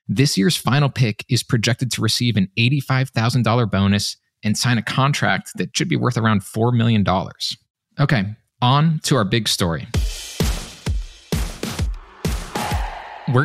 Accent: American